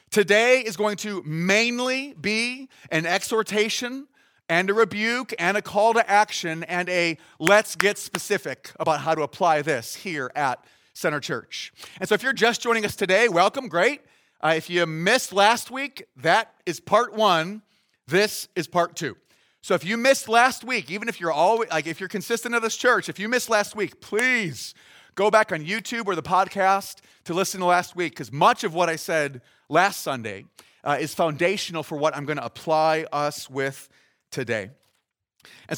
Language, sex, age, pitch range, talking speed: English, male, 30-49, 170-225 Hz, 185 wpm